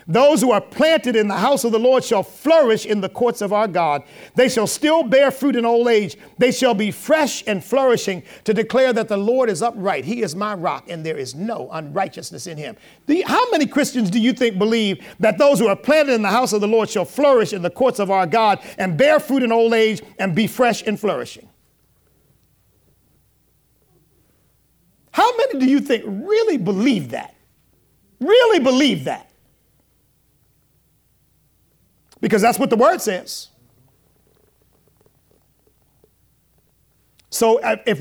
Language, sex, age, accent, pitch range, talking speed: English, male, 50-69, American, 210-270 Hz, 165 wpm